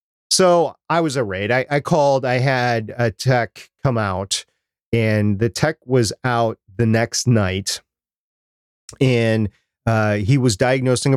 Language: English